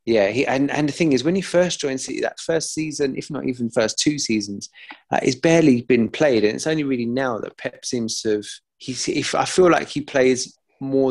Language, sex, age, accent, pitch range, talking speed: English, male, 20-39, British, 110-130 Hz, 240 wpm